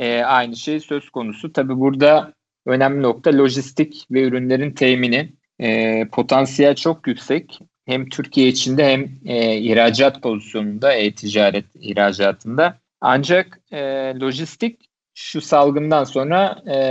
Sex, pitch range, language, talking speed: male, 115-140 Hz, Turkish, 115 wpm